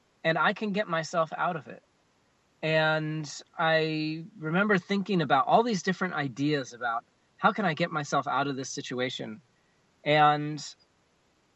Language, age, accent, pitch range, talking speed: English, 30-49, American, 145-185 Hz, 145 wpm